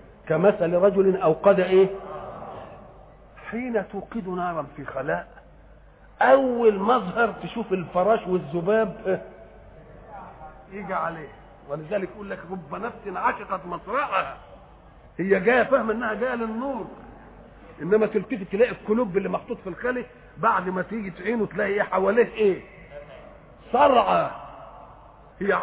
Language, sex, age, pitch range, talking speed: French, male, 50-69, 185-235 Hz, 115 wpm